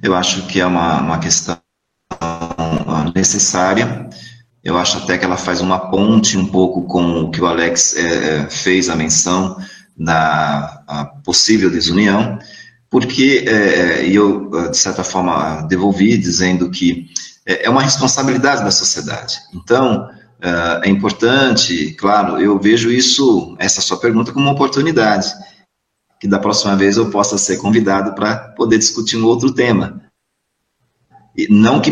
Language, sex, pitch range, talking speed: Portuguese, male, 90-115 Hz, 140 wpm